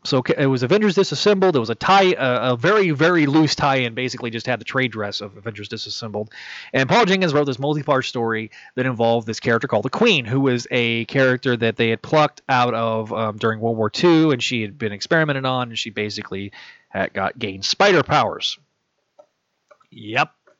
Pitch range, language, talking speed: 115-155 Hz, English, 200 wpm